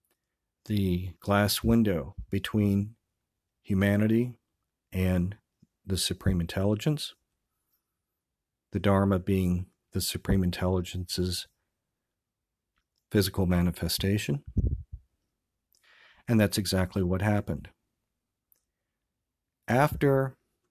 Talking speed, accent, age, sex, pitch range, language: 65 wpm, American, 40-59, male, 90-105 Hz, English